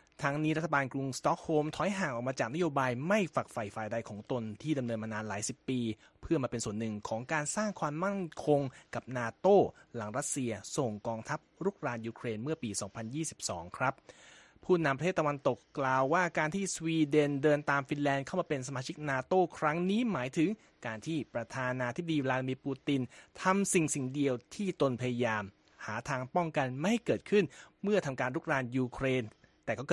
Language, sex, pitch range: Thai, male, 120-160 Hz